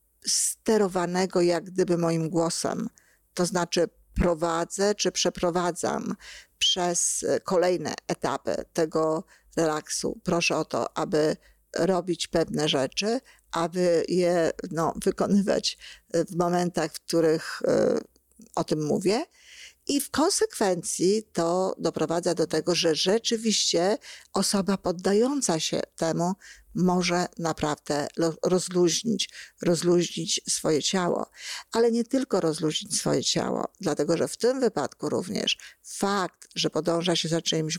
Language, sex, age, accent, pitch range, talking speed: Polish, female, 50-69, native, 165-205 Hz, 110 wpm